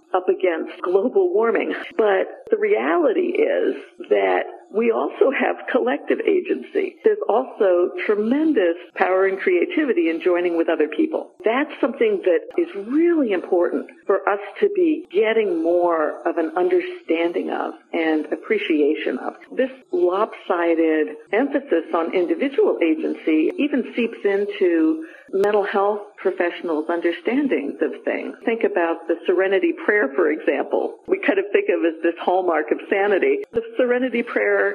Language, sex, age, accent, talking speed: English, female, 50-69, American, 140 wpm